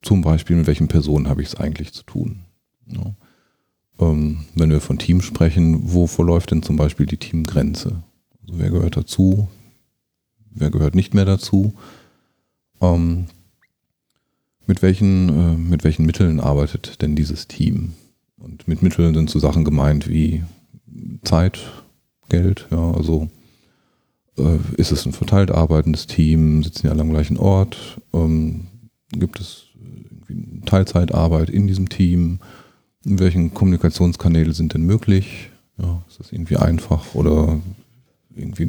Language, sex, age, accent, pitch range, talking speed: German, male, 40-59, German, 80-100 Hz, 140 wpm